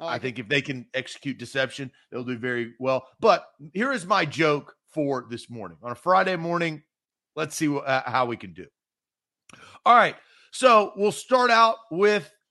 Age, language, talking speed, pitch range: 40-59, English, 185 wpm, 150-215 Hz